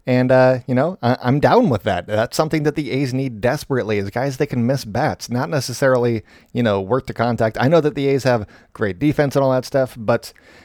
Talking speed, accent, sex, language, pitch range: 235 wpm, American, male, English, 110-135 Hz